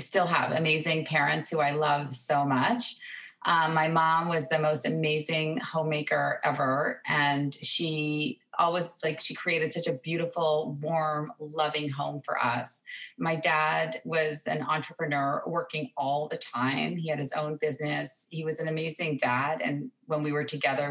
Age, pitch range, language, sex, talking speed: 30-49, 150-165 Hz, English, female, 160 wpm